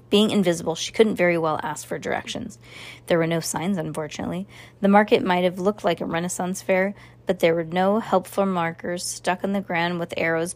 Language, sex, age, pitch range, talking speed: English, female, 20-39, 175-220 Hz, 200 wpm